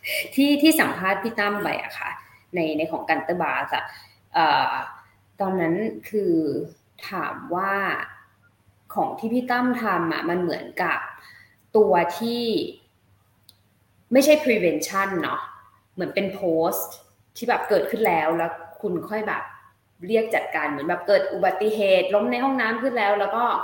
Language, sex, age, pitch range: Thai, female, 20-39, 165-225 Hz